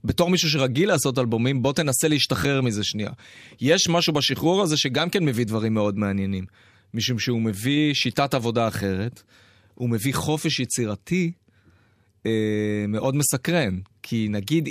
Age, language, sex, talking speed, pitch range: 30-49, Hebrew, male, 145 wpm, 110-150 Hz